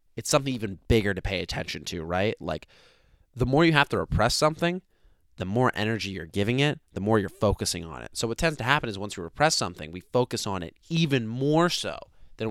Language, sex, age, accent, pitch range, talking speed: English, male, 20-39, American, 95-120 Hz, 225 wpm